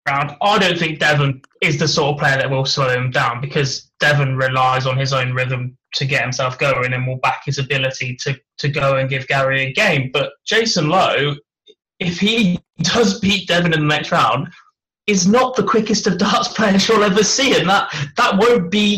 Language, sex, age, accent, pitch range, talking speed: English, male, 20-39, British, 135-185 Hz, 210 wpm